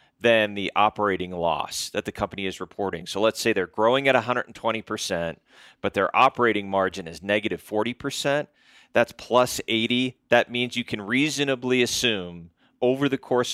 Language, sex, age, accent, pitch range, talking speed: English, male, 30-49, American, 105-130 Hz, 155 wpm